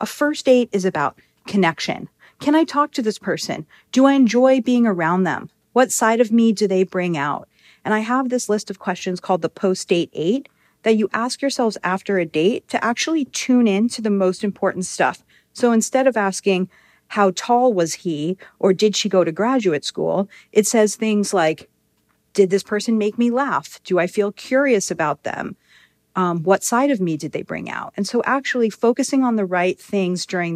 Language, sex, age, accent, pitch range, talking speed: English, female, 40-59, American, 185-240 Hz, 200 wpm